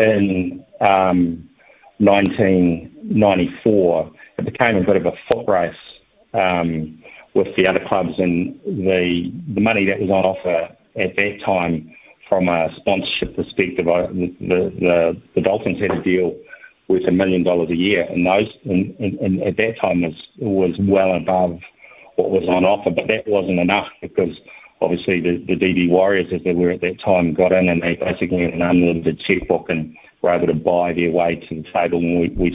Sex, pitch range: male, 85-95 Hz